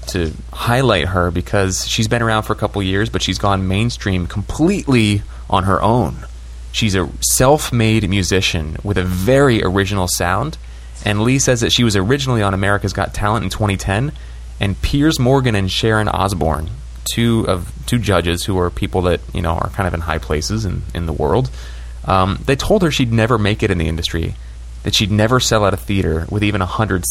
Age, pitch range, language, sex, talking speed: 30-49, 85-110 Hz, English, male, 200 wpm